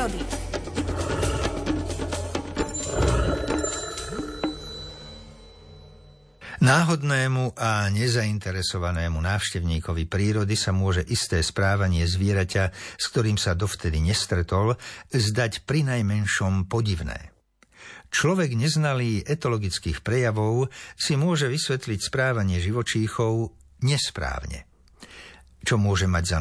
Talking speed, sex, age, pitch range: 75 wpm, male, 60-79, 90-125 Hz